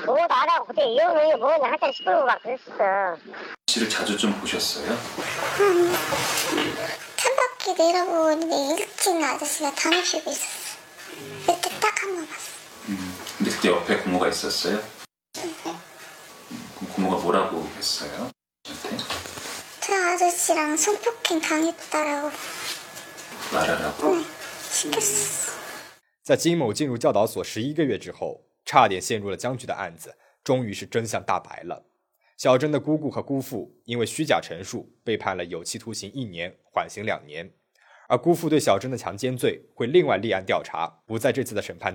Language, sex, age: Chinese, male, 40-59